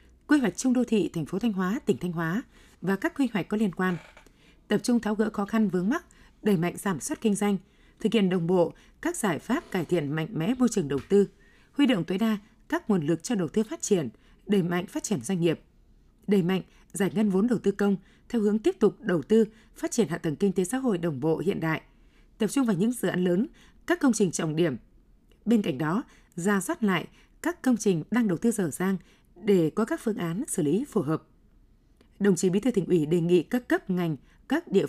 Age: 20-39